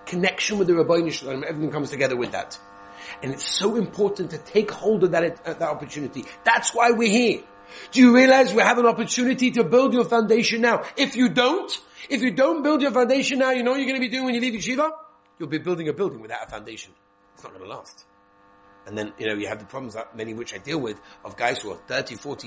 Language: English